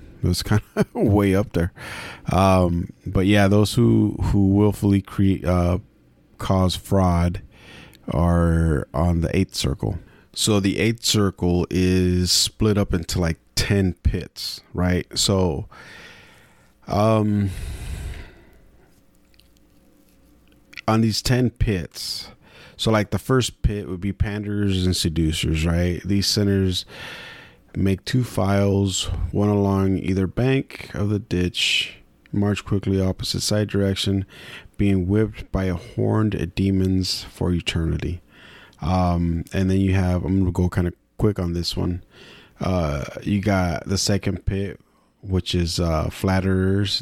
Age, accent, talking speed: 30-49, American, 130 wpm